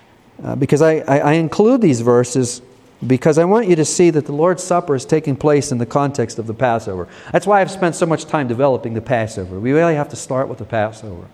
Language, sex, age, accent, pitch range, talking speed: English, male, 40-59, American, 120-160 Hz, 240 wpm